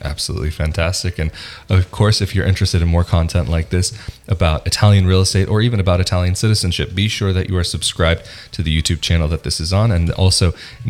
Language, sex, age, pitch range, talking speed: English, male, 30-49, 90-105 Hz, 215 wpm